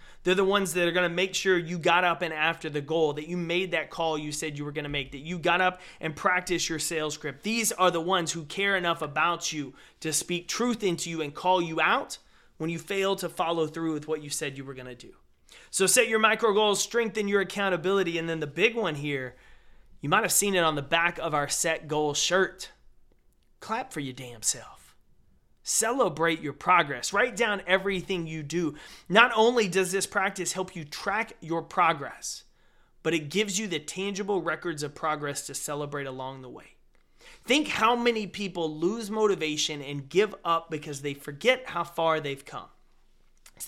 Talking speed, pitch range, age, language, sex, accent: 205 wpm, 155-195 Hz, 30-49, English, male, American